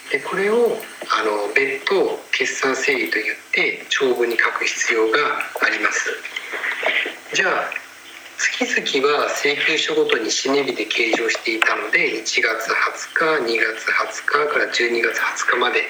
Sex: male